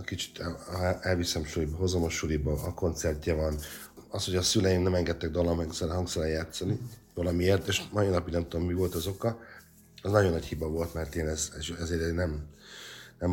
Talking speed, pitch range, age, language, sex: 180 wpm, 75-90 Hz, 50-69, Hungarian, male